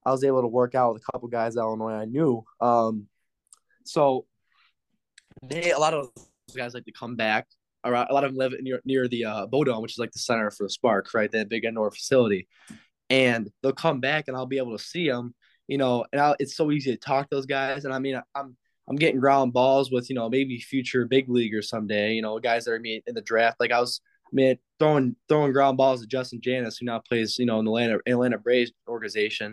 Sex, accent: male, American